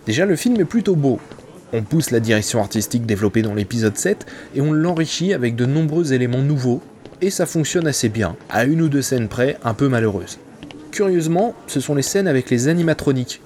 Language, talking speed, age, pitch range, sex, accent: French, 200 wpm, 20-39, 115-145 Hz, male, French